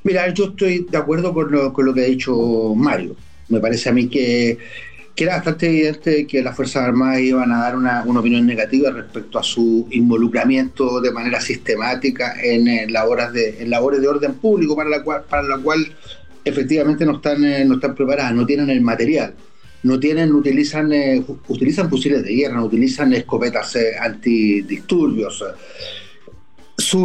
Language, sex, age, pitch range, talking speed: Spanish, male, 40-59, 125-165 Hz, 185 wpm